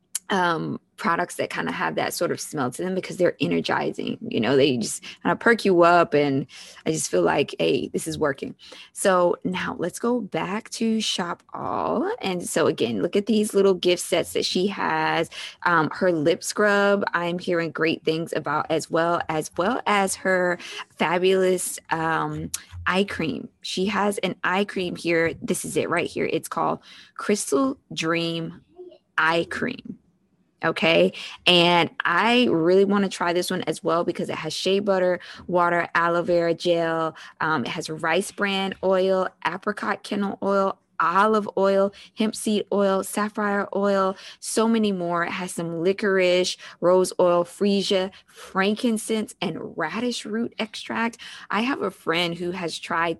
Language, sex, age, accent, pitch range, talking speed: English, female, 20-39, American, 165-200 Hz, 165 wpm